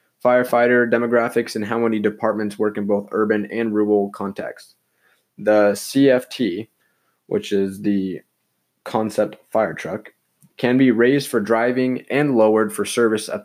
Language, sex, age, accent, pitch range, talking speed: English, male, 20-39, American, 105-125 Hz, 140 wpm